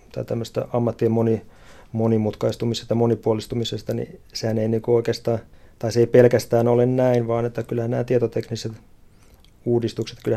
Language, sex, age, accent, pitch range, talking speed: Finnish, male, 30-49, native, 110-120 Hz, 135 wpm